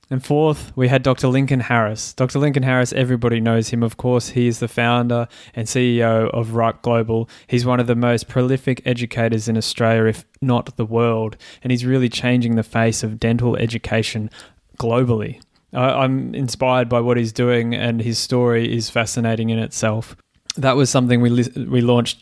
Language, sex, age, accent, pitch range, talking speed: English, male, 20-39, Australian, 115-125 Hz, 180 wpm